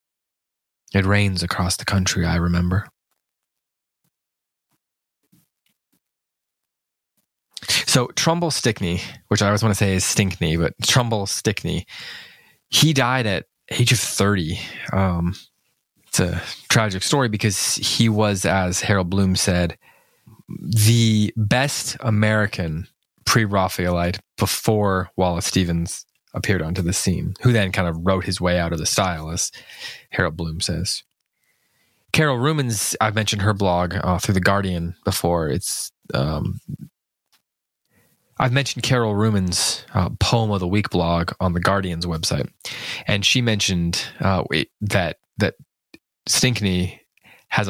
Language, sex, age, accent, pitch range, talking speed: English, male, 20-39, American, 90-110 Hz, 125 wpm